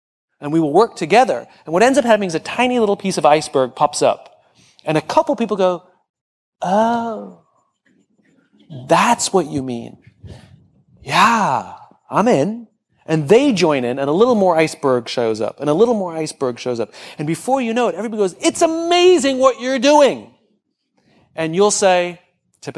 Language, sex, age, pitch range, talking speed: Persian, male, 30-49, 150-220 Hz, 175 wpm